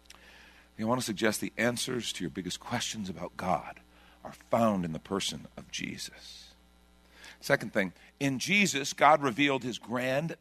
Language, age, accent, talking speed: English, 50-69, American, 155 wpm